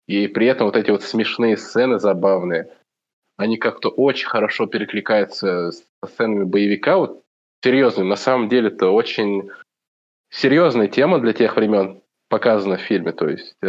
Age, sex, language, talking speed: 20-39, male, Ukrainian, 150 wpm